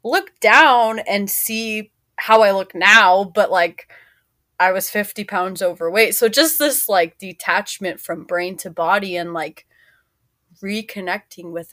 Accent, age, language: American, 20-39, English